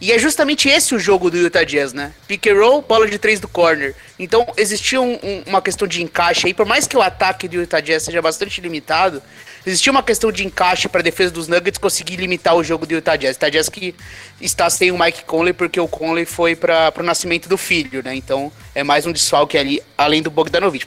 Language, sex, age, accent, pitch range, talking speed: Portuguese, male, 20-39, Brazilian, 155-215 Hz, 230 wpm